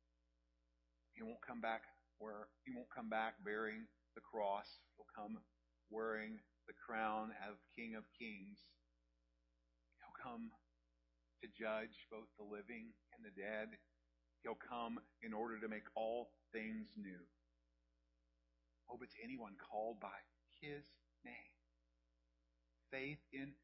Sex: male